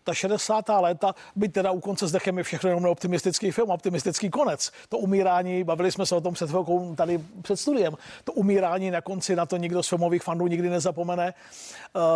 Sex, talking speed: male, 190 wpm